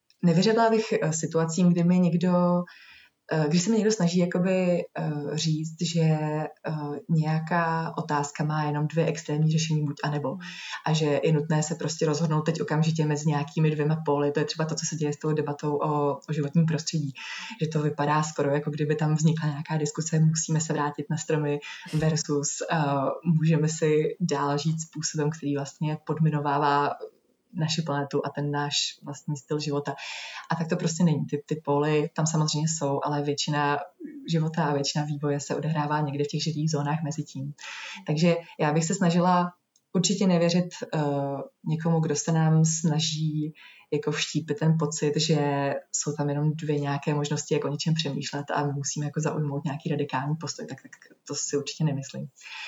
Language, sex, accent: Czech, female, native